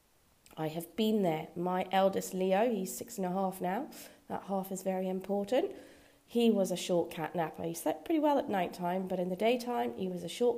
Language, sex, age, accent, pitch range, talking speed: English, female, 30-49, British, 175-210 Hz, 220 wpm